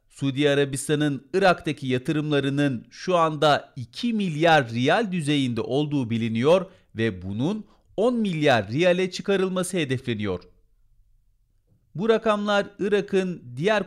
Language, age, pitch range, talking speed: Turkish, 40-59, 125-175 Hz, 100 wpm